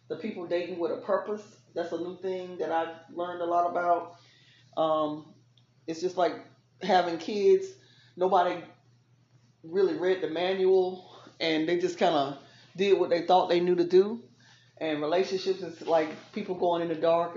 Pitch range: 150-185 Hz